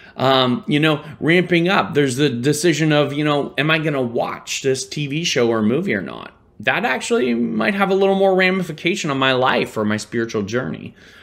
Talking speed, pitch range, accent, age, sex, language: 205 wpm, 130-195 Hz, American, 20-39, male, English